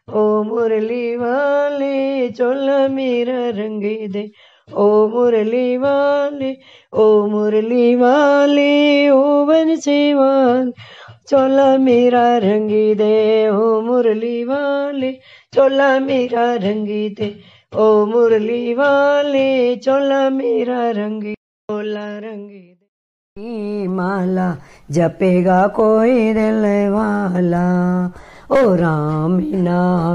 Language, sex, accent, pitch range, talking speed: Hindi, female, native, 190-245 Hz, 80 wpm